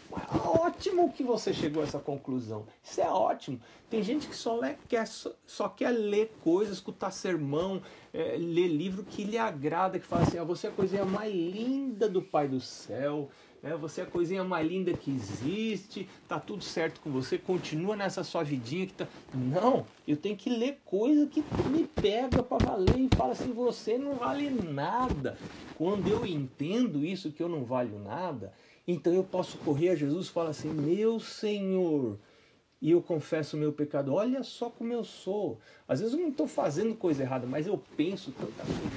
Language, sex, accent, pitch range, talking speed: Portuguese, male, Brazilian, 140-220 Hz, 180 wpm